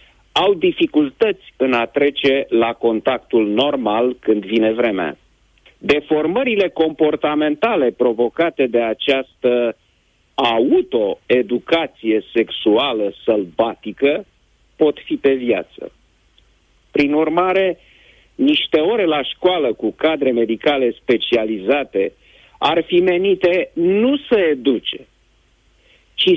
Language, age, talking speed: Romanian, 50-69, 90 wpm